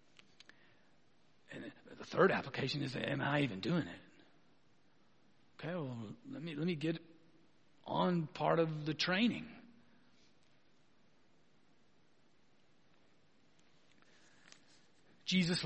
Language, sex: English, male